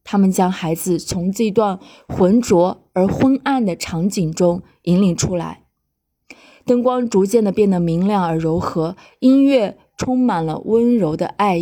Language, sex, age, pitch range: Chinese, female, 20-39, 180-240 Hz